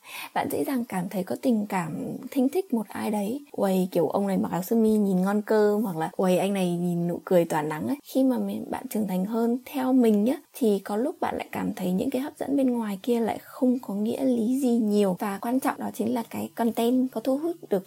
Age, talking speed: 20-39, 260 wpm